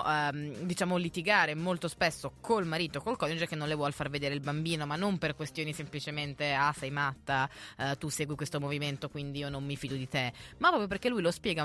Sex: female